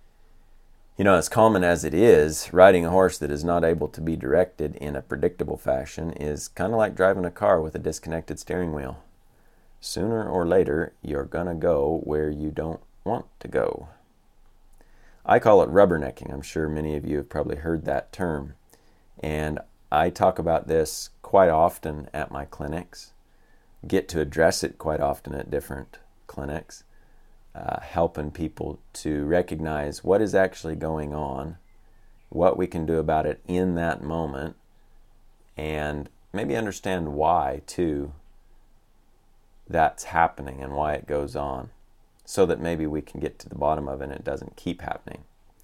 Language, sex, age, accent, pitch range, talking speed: English, male, 40-59, American, 75-90 Hz, 165 wpm